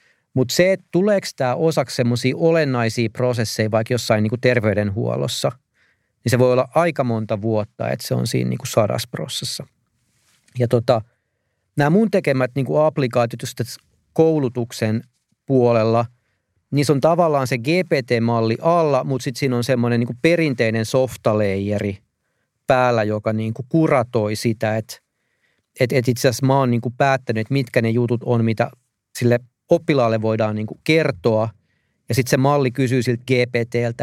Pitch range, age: 115-135 Hz, 40-59